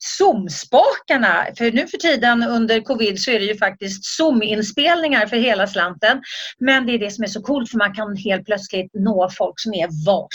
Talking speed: 195 wpm